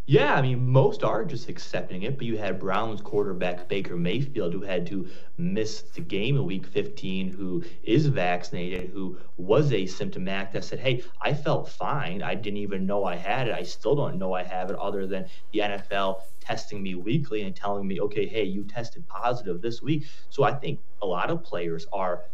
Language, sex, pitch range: English, male, 95-135 Hz